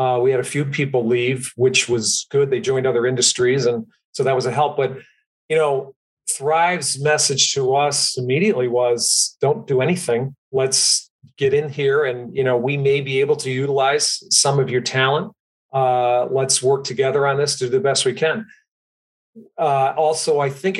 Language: English